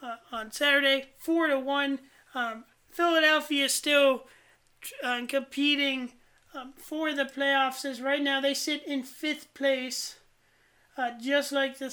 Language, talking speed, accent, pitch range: English, 140 wpm, American, 250-285 Hz